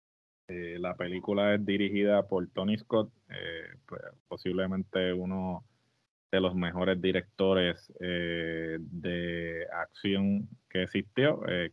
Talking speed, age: 115 wpm, 20-39